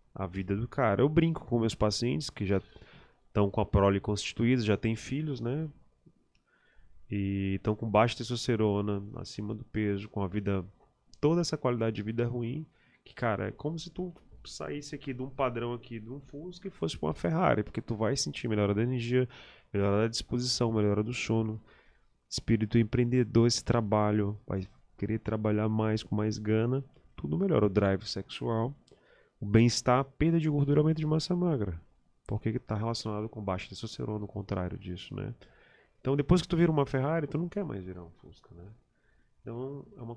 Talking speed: 185 wpm